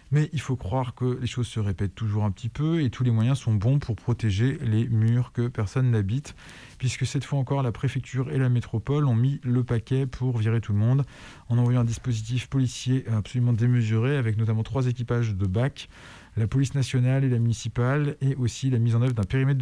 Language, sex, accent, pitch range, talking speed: French, male, French, 110-135 Hz, 215 wpm